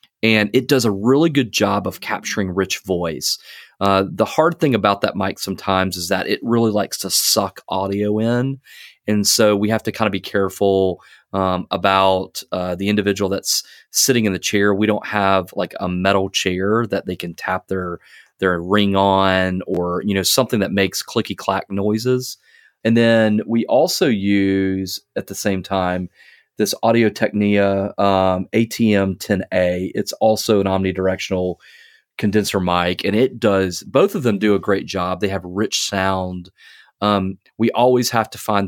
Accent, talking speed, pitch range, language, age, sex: American, 175 wpm, 95-105 Hz, English, 30-49, male